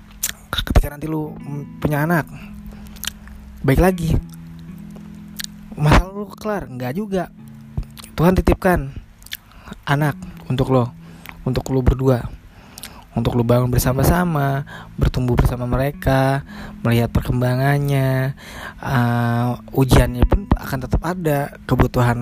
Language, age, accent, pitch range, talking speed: Indonesian, 20-39, native, 85-135 Hz, 95 wpm